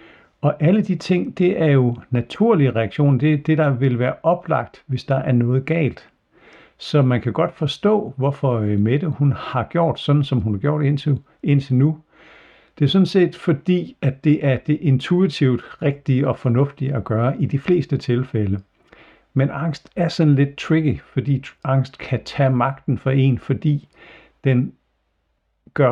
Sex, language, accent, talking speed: male, Danish, native, 170 wpm